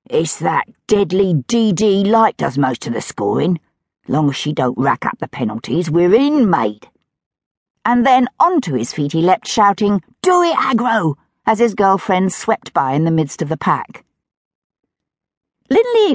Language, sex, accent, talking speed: English, female, British, 165 wpm